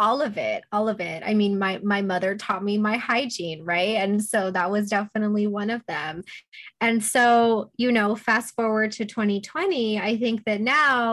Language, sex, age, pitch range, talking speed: English, female, 20-39, 190-240 Hz, 195 wpm